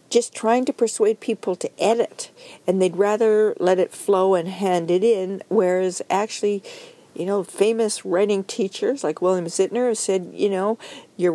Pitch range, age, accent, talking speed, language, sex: 180-230 Hz, 50-69, American, 165 wpm, English, female